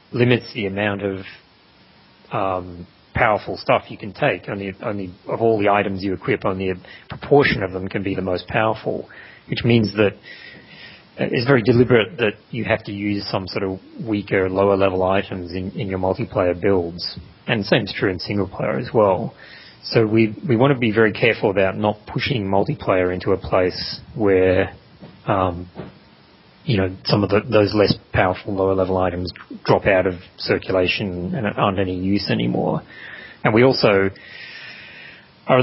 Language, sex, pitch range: English, male, 95-110 Hz